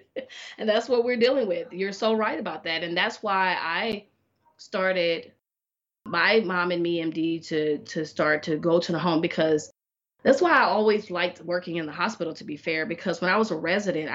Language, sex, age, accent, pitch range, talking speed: English, female, 20-39, American, 175-230 Hz, 205 wpm